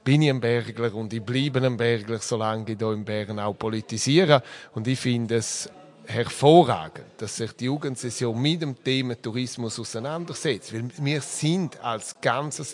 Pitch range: 115-145 Hz